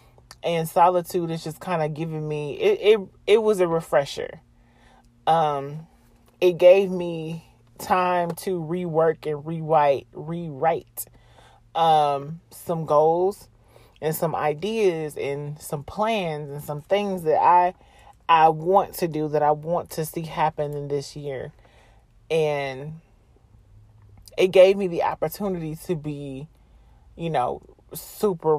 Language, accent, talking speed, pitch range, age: English, American, 130 wpm, 140-175 Hz, 30-49